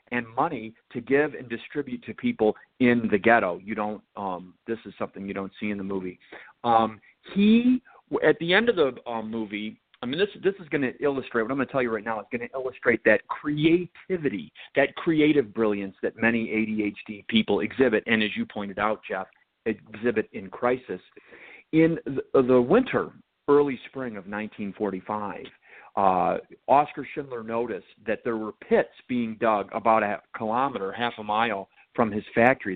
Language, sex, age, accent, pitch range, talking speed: English, male, 40-59, American, 105-145 Hz, 180 wpm